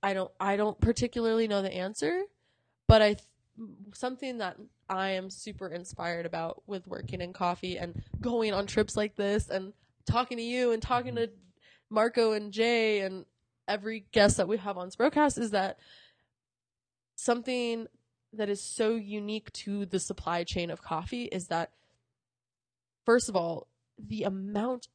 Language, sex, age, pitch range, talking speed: English, female, 20-39, 185-235 Hz, 160 wpm